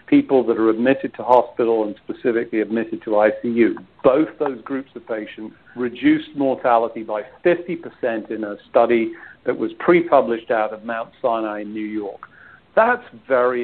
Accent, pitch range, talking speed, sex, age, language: British, 110-135 Hz, 155 wpm, male, 50-69, English